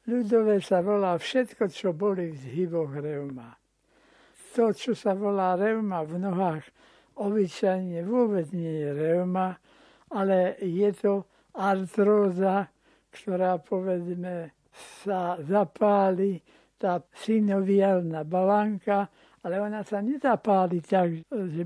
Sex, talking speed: male, 105 wpm